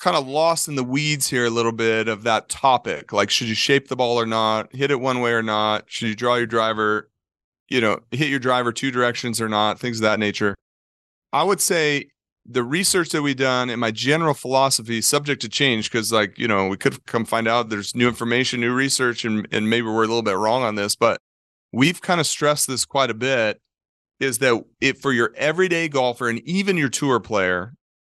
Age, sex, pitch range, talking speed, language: 30-49, male, 110-135 Hz, 225 wpm, English